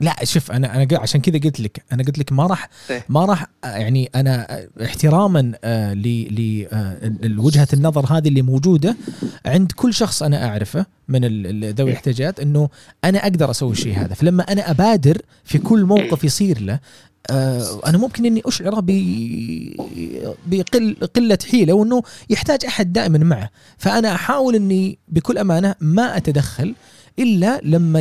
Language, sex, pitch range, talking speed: Arabic, male, 130-180 Hz, 150 wpm